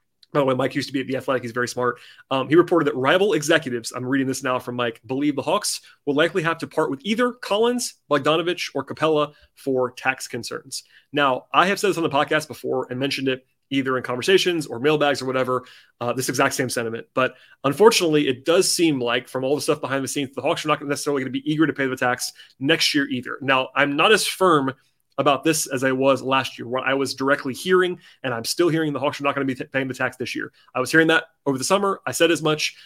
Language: English